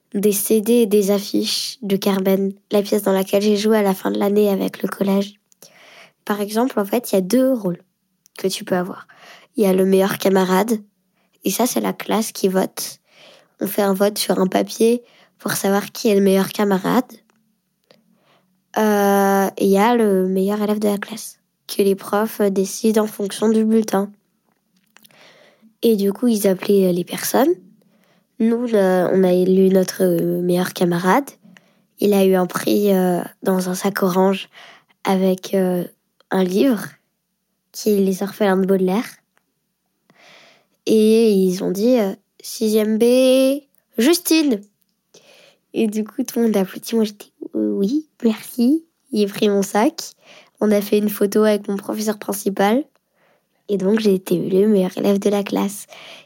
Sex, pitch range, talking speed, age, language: female, 190-215 Hz, 175 wpm, 20-39, French